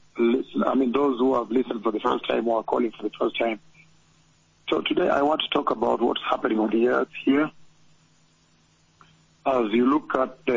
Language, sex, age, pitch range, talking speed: English, male, 50-69, 115-130 Hz, 200 wpm